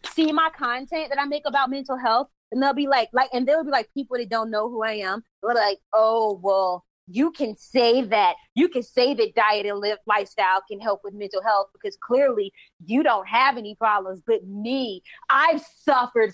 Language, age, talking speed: English, 20-39, 210 wpm